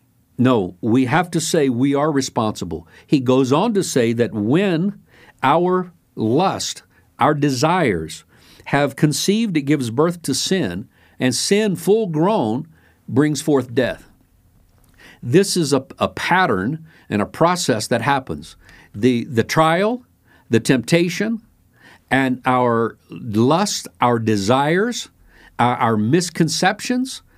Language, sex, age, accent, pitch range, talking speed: English, male, 50-69, American, 125-185 Hz, 125 wpm